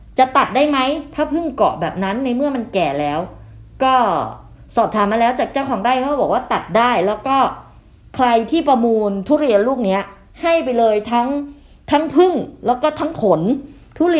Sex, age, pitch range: female, 20-39, 180-255 Hz